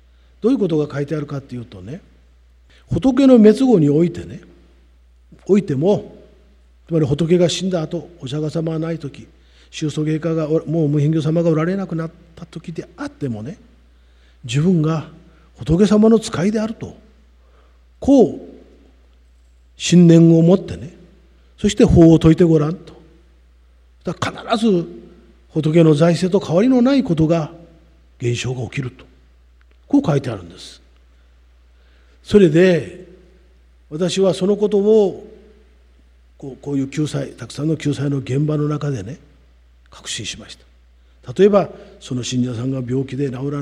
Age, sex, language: 40-59, male, Japanese